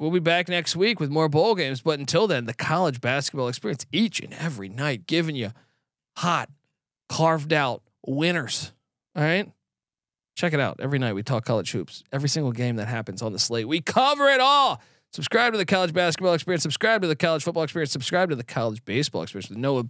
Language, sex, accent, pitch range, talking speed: English, male, American, 135-175 Hz, 210 wpm